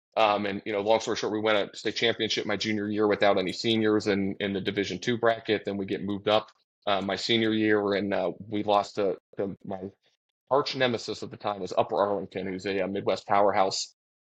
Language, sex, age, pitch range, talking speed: English, male, 20-39, 100-115 Hz, 220 wpm